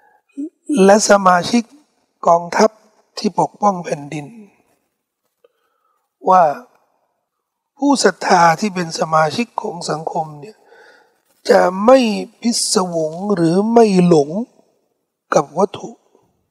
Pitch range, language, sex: 180-255 Hz, Thai, male